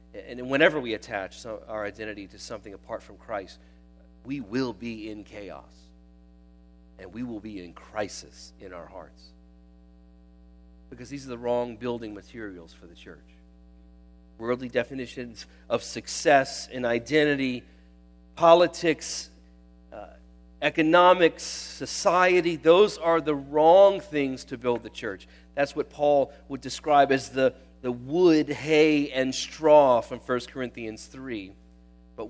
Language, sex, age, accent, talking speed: English, male, 40-59, American, 130 wpm